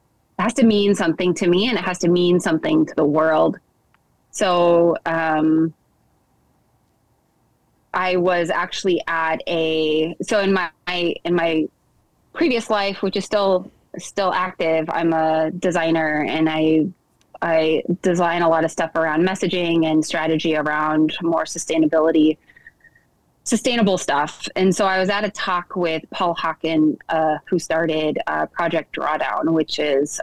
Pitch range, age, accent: 160-185 Hz, 20-39, American